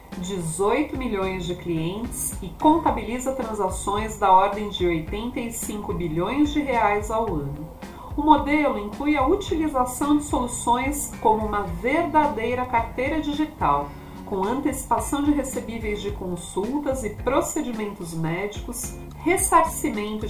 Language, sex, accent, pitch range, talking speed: Portuguese, female, Brazilian, 205-295 Hz, 110 wpm